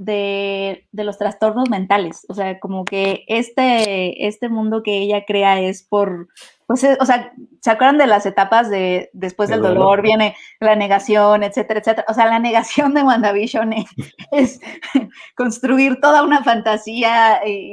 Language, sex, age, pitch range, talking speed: Spanish, female, 20-39, 195-230 Hz, 160 wpm